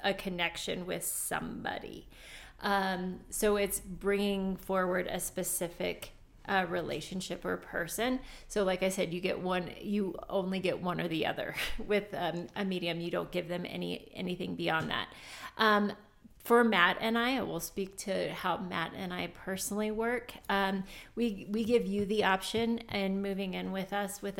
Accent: American